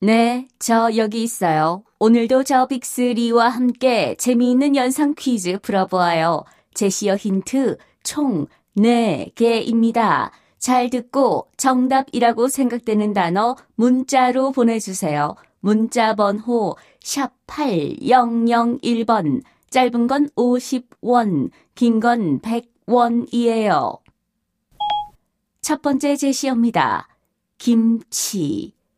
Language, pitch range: Korean, 215-250 Hz